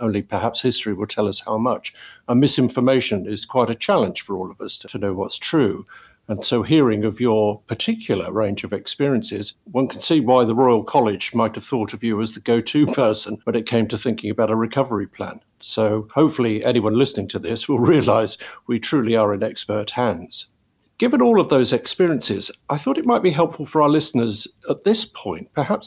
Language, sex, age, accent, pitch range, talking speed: English, male, 50-69, British, 110-150 Hz, 205 wpm